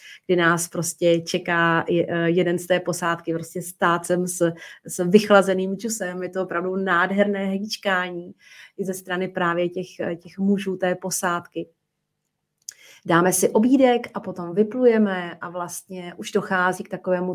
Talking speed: 140 wpm